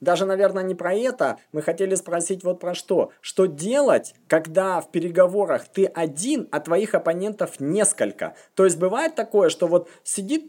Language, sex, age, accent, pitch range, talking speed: Russian, male, 20-39, native, 175-265 Hz, 165 wpm